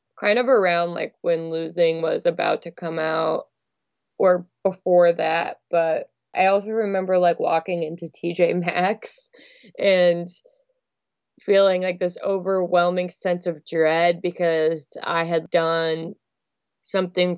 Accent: American